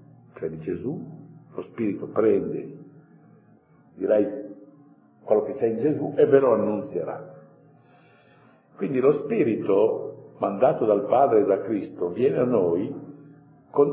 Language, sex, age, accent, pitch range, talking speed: Italian, male, 50-69, native, 105-155 Hz, 120 wpm